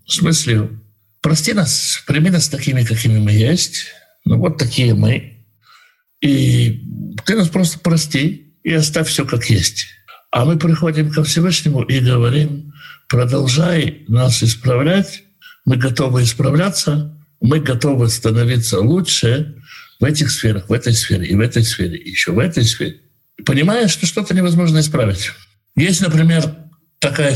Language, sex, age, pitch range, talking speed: Russian, male, 60-79, 115-160 Hz, 140 wpm